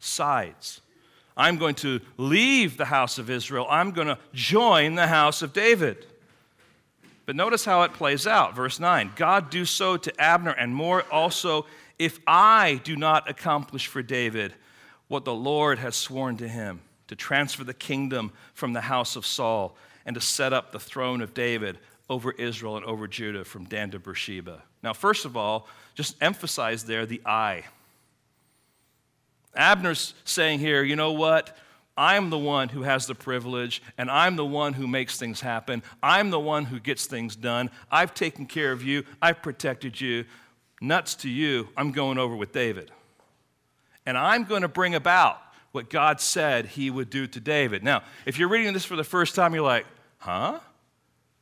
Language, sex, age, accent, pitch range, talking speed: English, male, 50-69, American, 125-170 Hz, 175 wpm